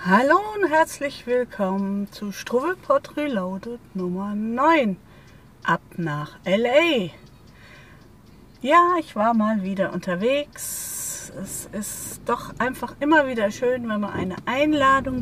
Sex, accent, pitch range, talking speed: female, German, 200-275 Hz, 115 wpm